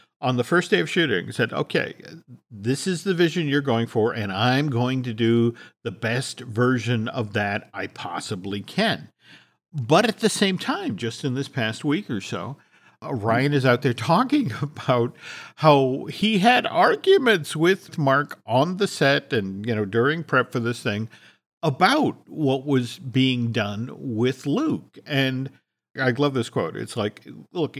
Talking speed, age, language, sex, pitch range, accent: 170 wpm, 50-69, English, male, 120-155 Hz, American